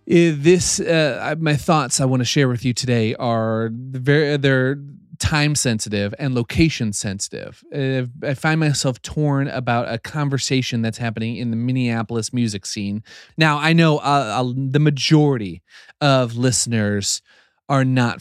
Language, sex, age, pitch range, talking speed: English, male, 30-49, 115-145 Hz, 140 wpm